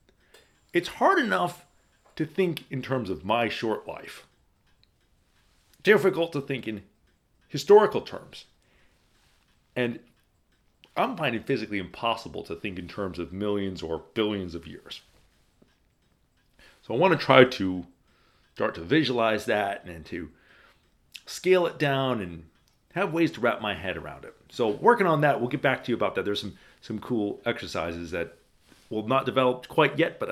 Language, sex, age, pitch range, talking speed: English, male, 40-59, 95-140 Hz, 155 wpm